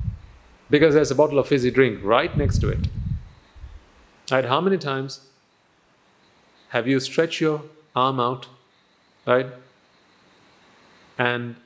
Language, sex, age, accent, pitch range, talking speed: English, male, 40-59, Indian, 110-140 Hz, 115 wpm